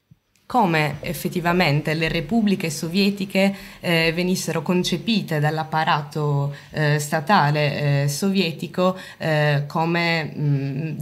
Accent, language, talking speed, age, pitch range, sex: native, Italian, 85 wpm, 20-39, 150-175 Hz, female